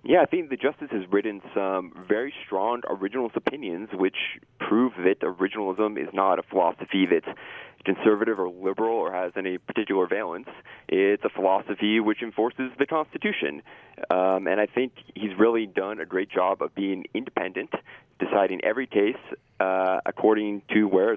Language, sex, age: English, male, 20-39